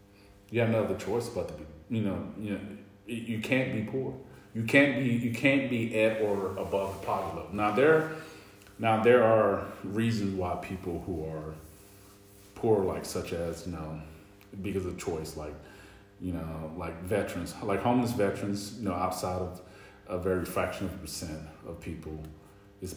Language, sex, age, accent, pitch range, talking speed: English, male, 30-49, American, 90-100 Hz, 180 wpm